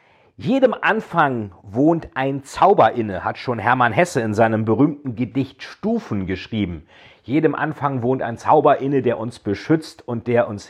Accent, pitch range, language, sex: German, 125-165 Hz, German, male